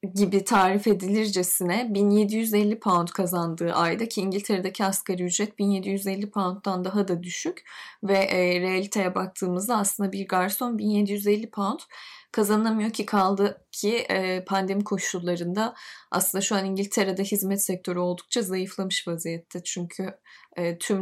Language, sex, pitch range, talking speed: Turkish, female, 185-220 Hz, 125 wpm